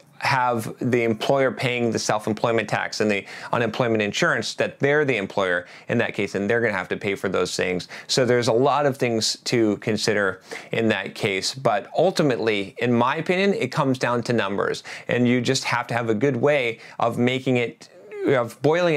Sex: male